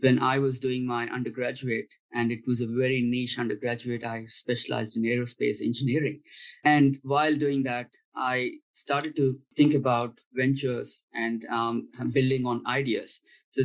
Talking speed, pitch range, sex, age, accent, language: 150 wpm, 120-135 Hz, male, 20-39, Indian, English